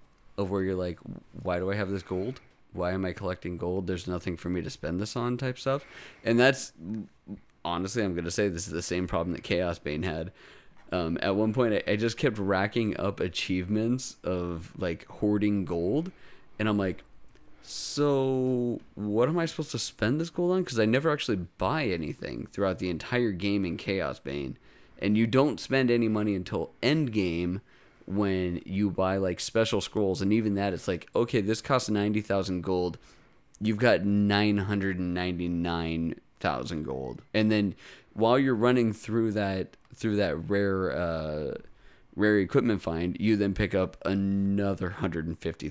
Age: 30-49